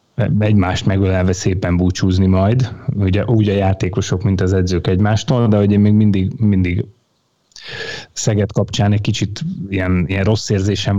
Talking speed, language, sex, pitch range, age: 145 wpm, Hungarian, male, 95-105 Hz, 30-49